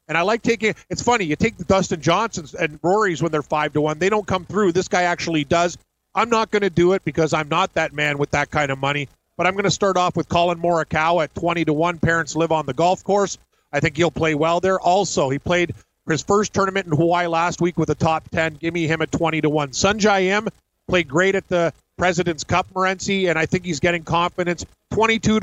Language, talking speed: English, 250 wpm